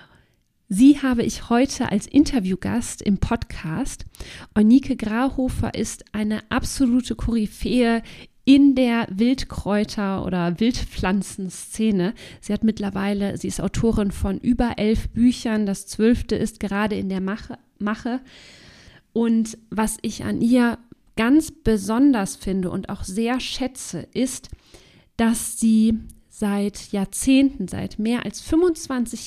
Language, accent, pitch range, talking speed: German, German, 200-245 Hz, 120 wpm